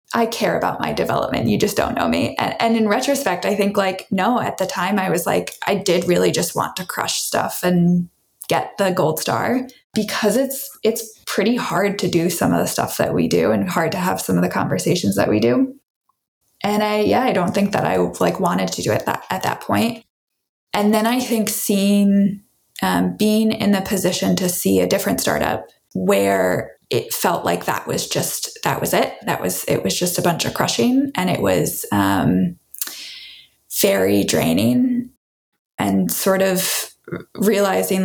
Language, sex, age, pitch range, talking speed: English, female, 20-39, 185-220 Hz, 195 wpm